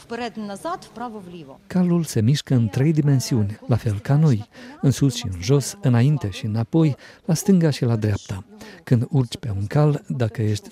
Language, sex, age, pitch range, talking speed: Romanian, male, 50-69, 110-145 Hz, 170 wpm